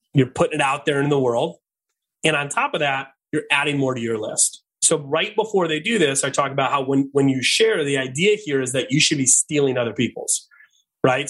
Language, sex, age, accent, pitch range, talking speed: English, male, 30-49, American, 130-155 Hz, 240 wpm